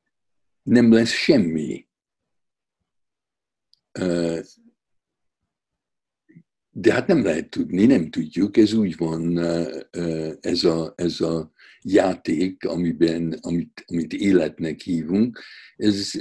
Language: Hungarian